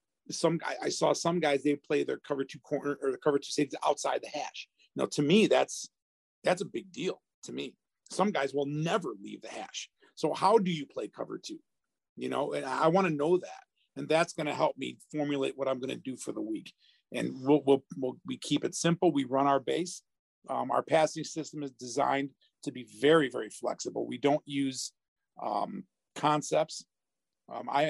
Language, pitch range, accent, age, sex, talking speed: English, 135-165 Hz, American, 40-59, male, 205 wpm